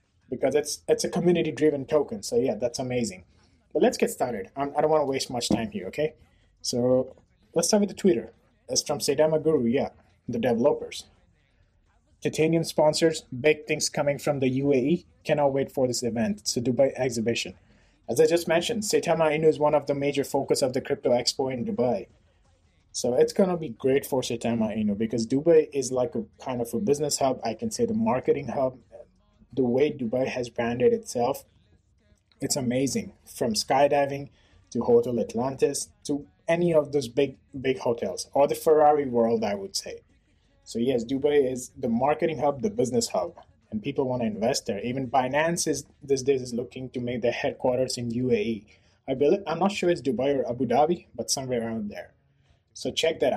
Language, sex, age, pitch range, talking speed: English, male, 20-39, 120-155 Hz, 190 wpm